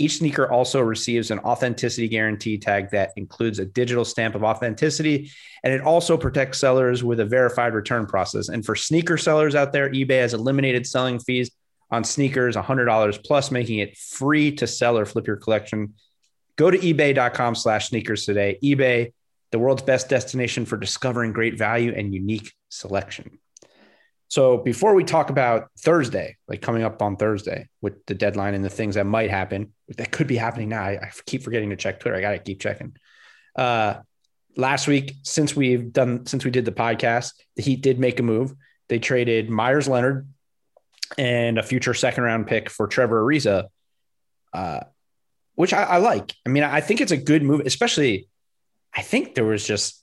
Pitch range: 110-135 Hz